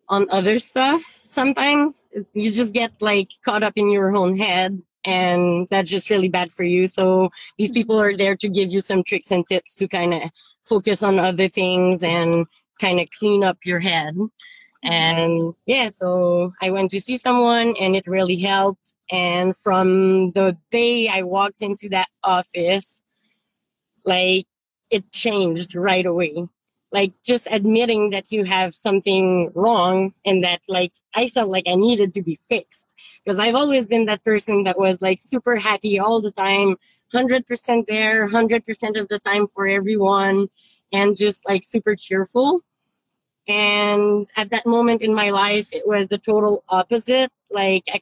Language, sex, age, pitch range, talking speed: English, female, 20-39, 185-220 Hz, 165 wpm